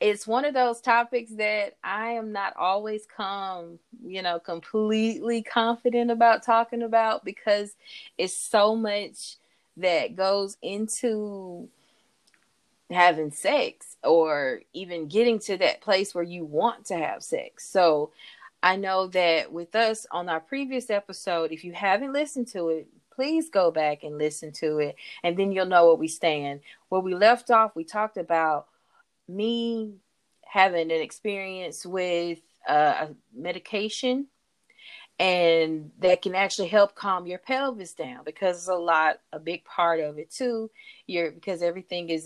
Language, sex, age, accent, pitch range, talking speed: English, female, 30-49, American, 170-225 Hz, 150 wpm